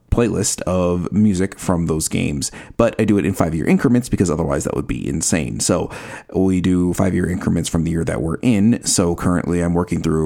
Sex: male